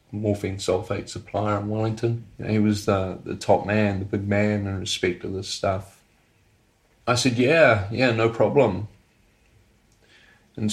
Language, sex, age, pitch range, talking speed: English, male, 30-49, 100-115 Hz, 155 wpm